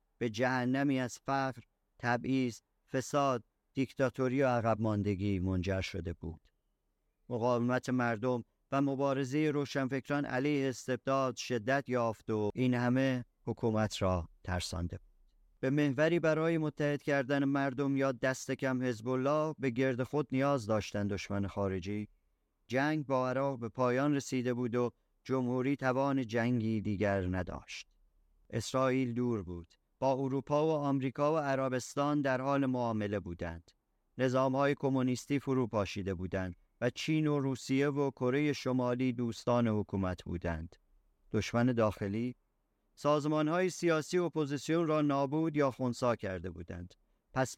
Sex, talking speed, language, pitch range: male, 125 wpm, Persian, 110-140 Hz